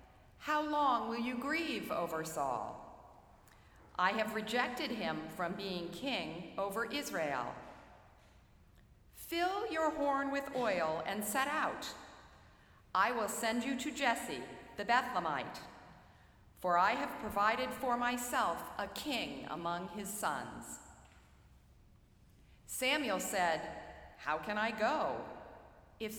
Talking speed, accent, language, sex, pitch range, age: 115 wpm, American, English, female, 170-270 Hz, 50-69